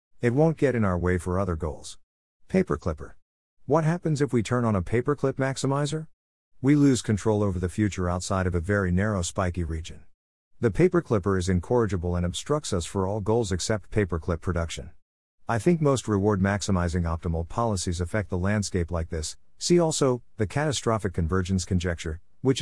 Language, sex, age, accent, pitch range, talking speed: English, male, 50-69, American, 90-115 Hz, 175 wpm